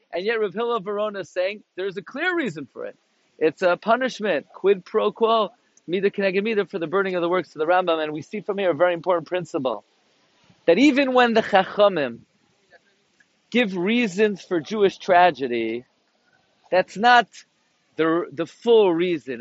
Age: 40-59